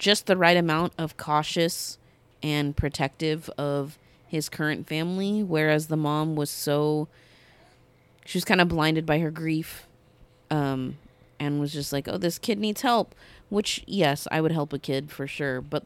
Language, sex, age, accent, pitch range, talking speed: English, female, 30-49, American, 145-180 Hz, 170 wpm